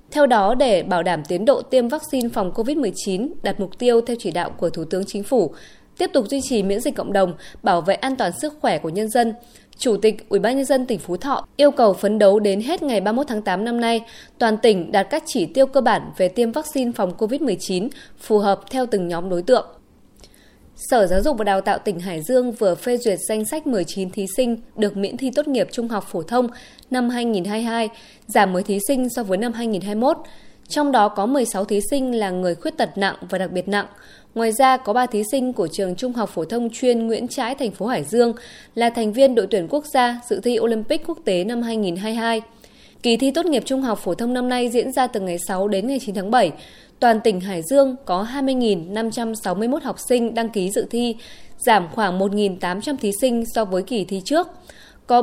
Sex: female